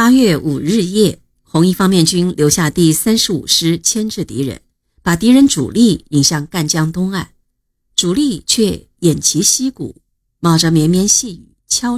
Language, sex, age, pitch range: Chinese, female, 50-69, 150-215 Hz